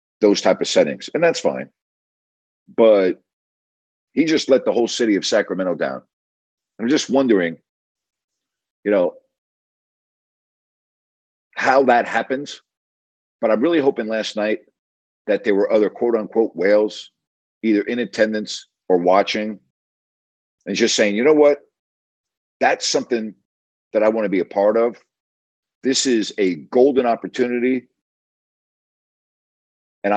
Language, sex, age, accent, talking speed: English, male, 50-69, American, 125 wpm